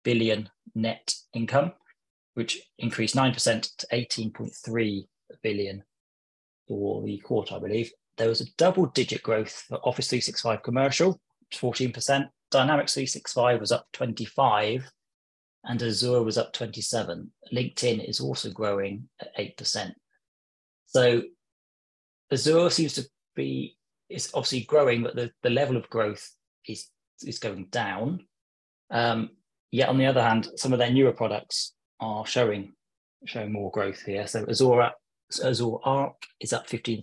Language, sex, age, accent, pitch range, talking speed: English, male, 30-49, British, 105-130 Hz, 150 wpm